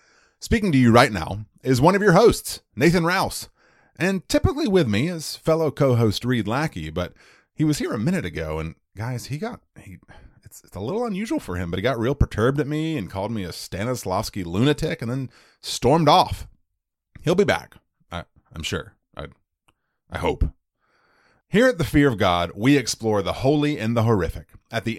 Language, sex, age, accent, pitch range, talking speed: English, male, 30-49, American, 95-150 Hz, 195 wpm